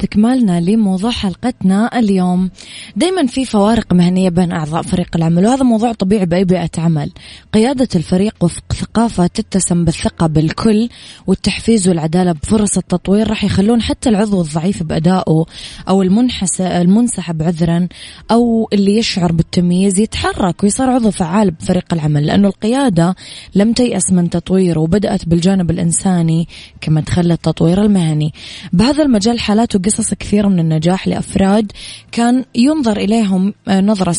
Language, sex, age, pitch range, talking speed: Arabic, female, 20-39, 170-210 Hz, 130 wpm